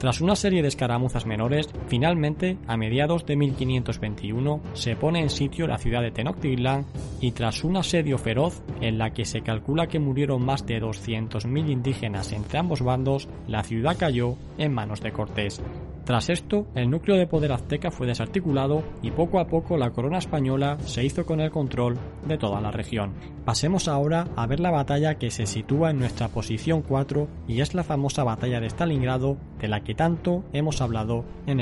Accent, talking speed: Spanish, 185 wpm